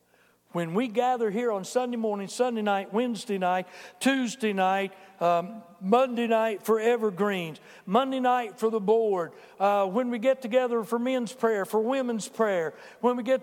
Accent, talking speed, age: American, 165 wpm, 60-79